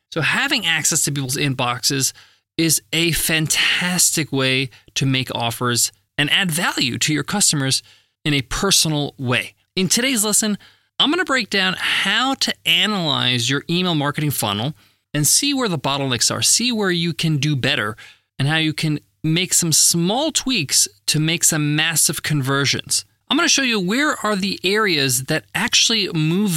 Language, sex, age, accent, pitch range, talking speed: English, male, 20-39, American, 135-195 Hz, 170 wpm